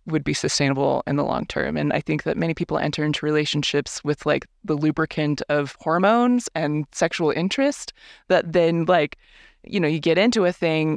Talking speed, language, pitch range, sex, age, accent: 190 wpm, English, 145-190 Hz, female, 20-39, American